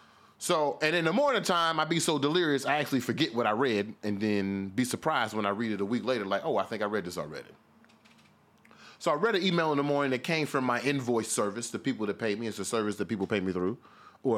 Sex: male